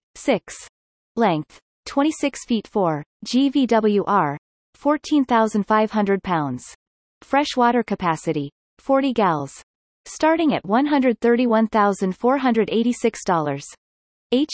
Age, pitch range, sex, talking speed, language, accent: 30-49, 185-245 Hz, female, 60 wpm, English, American